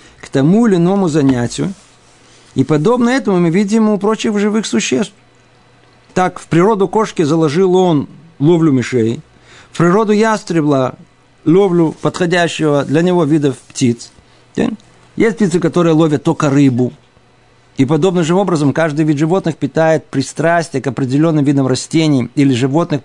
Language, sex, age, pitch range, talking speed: Russian, male, 50-69, 125-185 Hz, 135 wpm